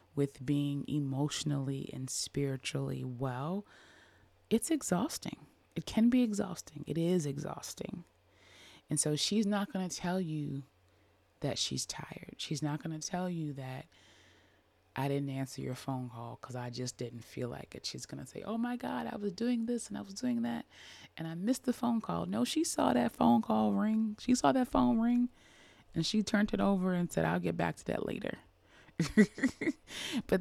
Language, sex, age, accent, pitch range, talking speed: English, female, 20-39, American, 125-195 Hz, 185 wpm